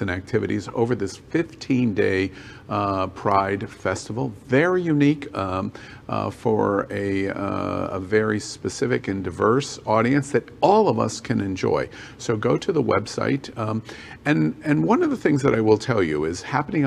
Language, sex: English, male